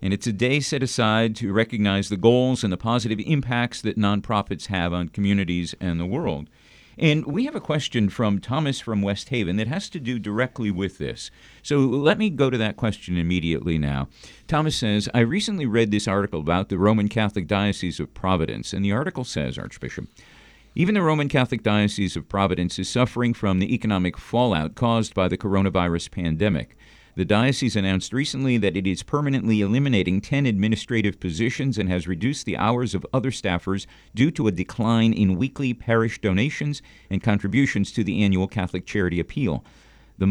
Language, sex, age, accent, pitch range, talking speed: English, male, 50-69, American, 95-125 Hz, 180 wpm